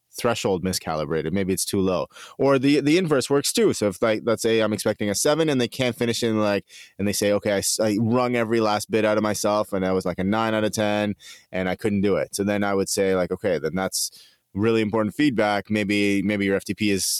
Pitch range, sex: 95-120 Hz, male